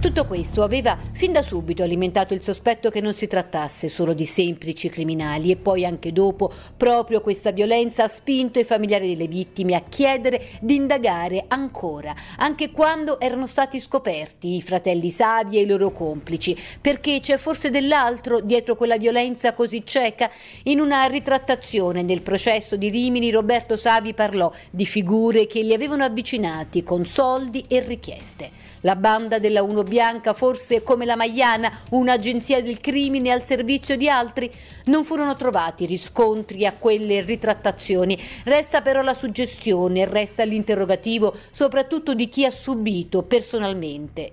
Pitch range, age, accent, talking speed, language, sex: 185-245 Hz, 50-69, native, 150 wpm, Italian, female